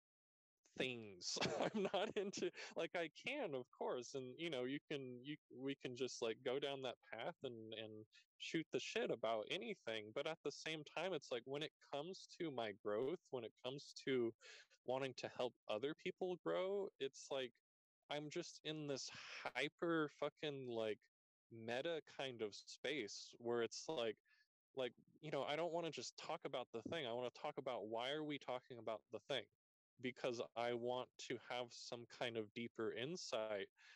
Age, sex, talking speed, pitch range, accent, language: 20-39, male, 180 wpm, 115-145 Hz, American, English